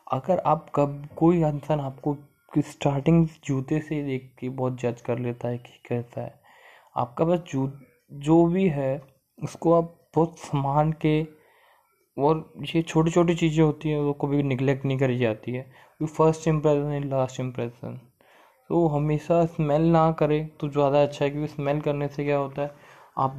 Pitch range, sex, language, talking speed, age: 125-150 Hz, male, Hindi, 175 wpm, 20-39